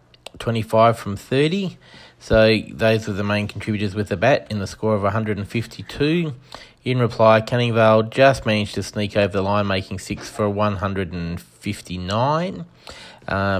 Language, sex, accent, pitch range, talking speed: English, male, Australian, 105-120 Hz, 135 wpm